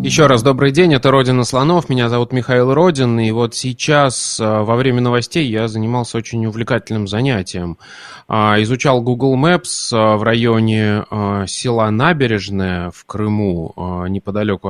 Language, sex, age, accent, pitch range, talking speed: Russian, male, 20-39, native, 110-135 Hz, 130 wpm